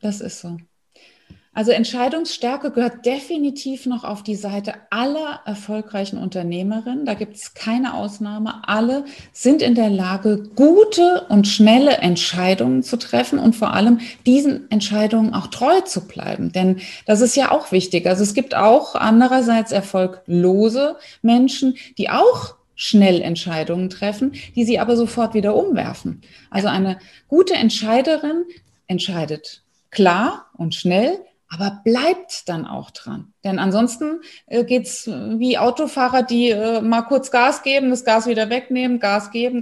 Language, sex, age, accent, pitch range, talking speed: German, female, 30-49, German, 200-250 Hz, 140 wpm